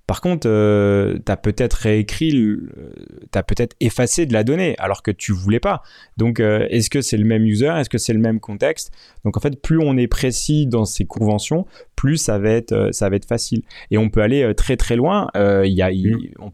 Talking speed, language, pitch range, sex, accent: 230 wpm, French, 105-130 Hz, male, French